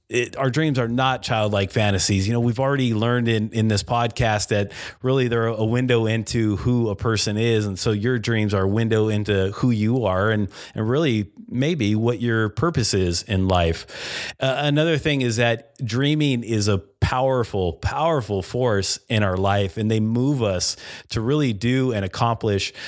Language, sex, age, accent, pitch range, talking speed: English, male, 30-49, American, 100-125 Hz, 185 wpm